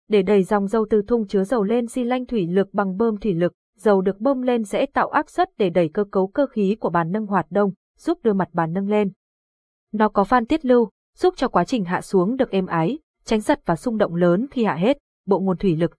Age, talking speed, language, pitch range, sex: 20-39, 260 wpm, Vietnamese, 185-240 Hz, female